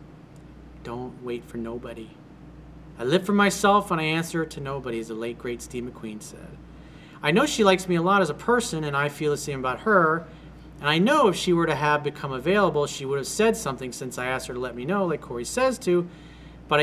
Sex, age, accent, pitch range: male, 40-59, American, 130-175 Hz